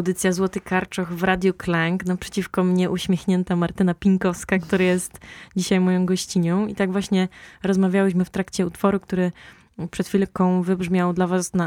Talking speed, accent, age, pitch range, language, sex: 155 wpm, native, 20-39, 175-195 Hz, Polish, female